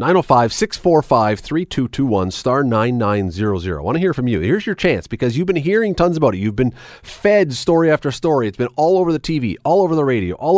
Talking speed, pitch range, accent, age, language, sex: 200 wpm, 110-160 Hz, American, 40-59, English, male